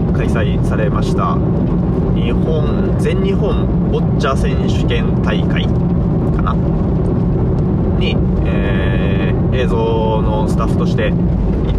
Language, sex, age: Japanese, male, 20-39